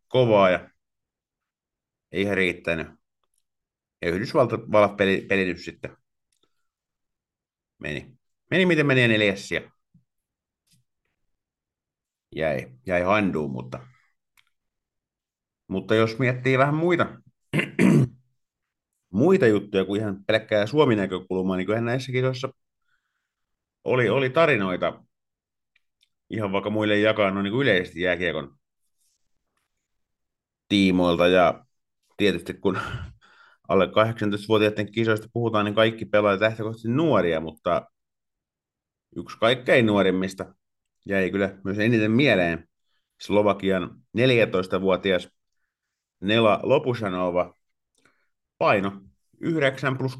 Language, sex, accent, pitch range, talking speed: Finnish, male, native, 95-120 Hz, 90 wpm